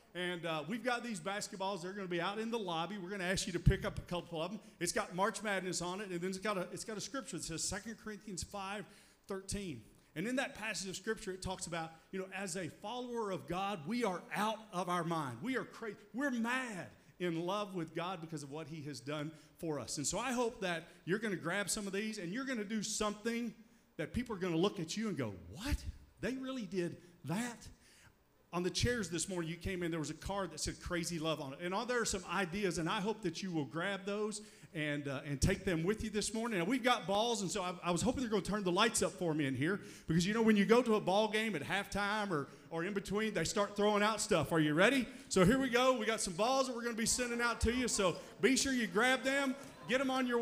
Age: 40-59